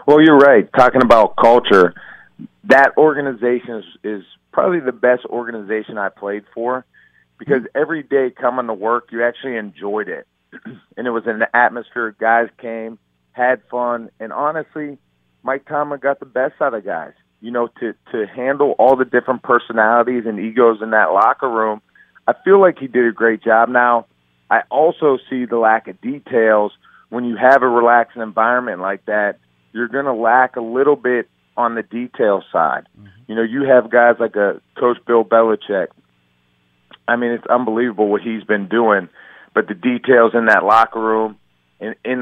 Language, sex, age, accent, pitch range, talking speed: English, male, 40-59, American, 110-125 Hz, 175 wpm